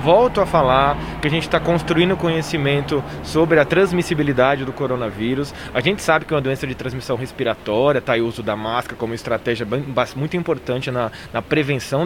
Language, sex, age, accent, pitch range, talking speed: Portuguese, male, 20-39, Brazilian, 130-180 Hz, 190 wpm